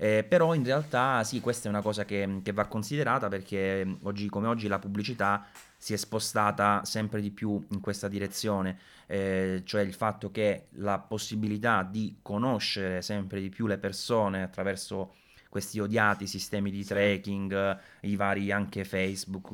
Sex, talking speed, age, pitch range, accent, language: male, 160 wpm, 20-39, 100-110 Hz, native, Italian